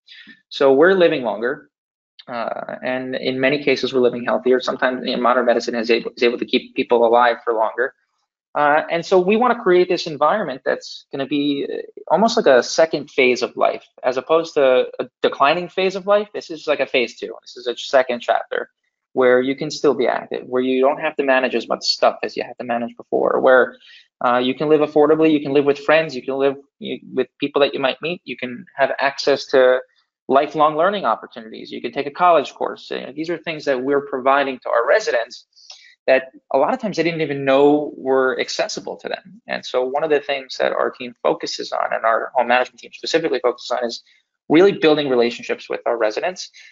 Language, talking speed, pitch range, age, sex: English, 220 wpm, 125-155 Hz, 20-39, male